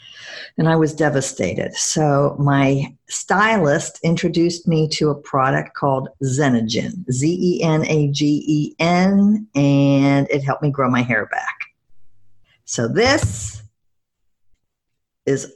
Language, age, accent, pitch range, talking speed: English, 50-69, American, 140-180 Hz, 100 wpm